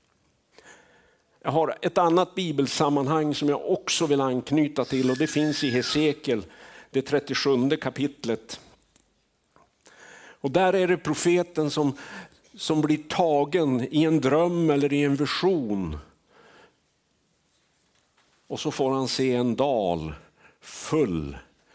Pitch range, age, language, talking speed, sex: 105-150 Hz, 60-79, Swedish, 120 wpm, male